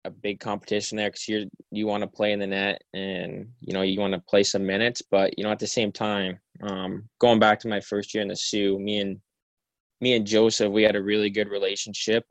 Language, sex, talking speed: English, male, 240 wpm